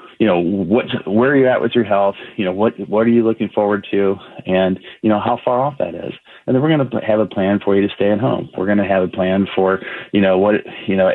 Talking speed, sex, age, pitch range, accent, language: 285 wpm, male, 30-49, 95-110 Hz, American, English